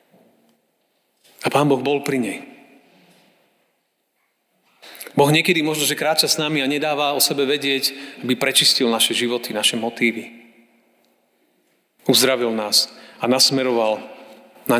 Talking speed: 120 wpm